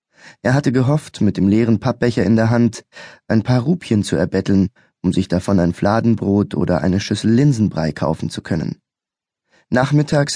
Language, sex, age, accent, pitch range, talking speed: German, male, 20-39, German, 105-125 Hz, 160 wpm